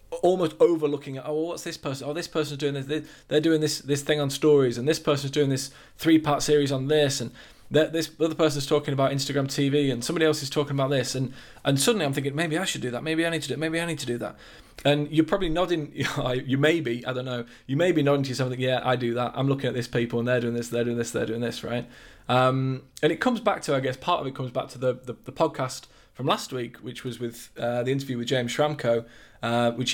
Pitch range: 120-150 Hz